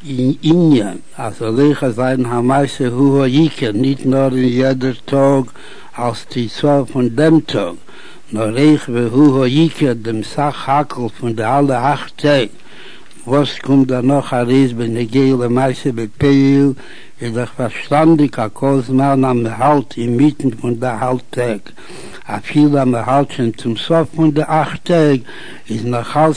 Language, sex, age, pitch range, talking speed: Hebrew, male, 60-79, 125-145 Hz, 100 wpm